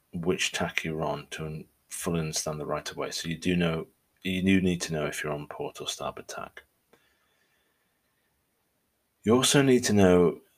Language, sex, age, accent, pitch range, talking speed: English, male, 30-49, British, 80-95 Hz, 180 wpm